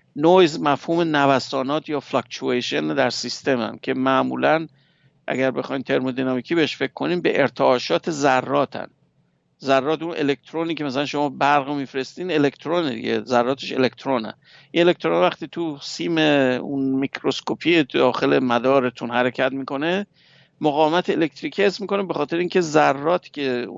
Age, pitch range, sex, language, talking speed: 50-69, 130-165 Hz, male, English, 125 wpm